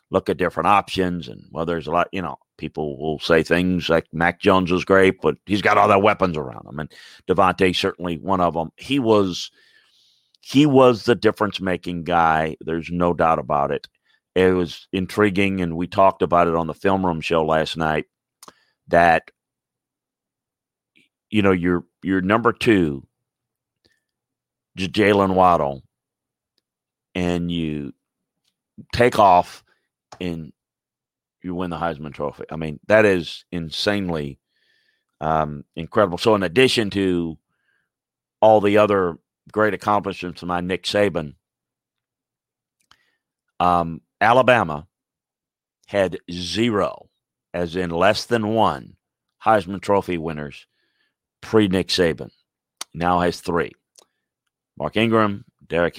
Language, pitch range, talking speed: English, 80-100 Hz, 130 wpm